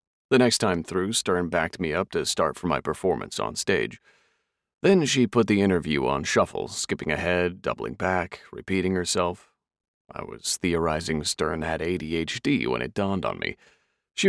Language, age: English, 40-59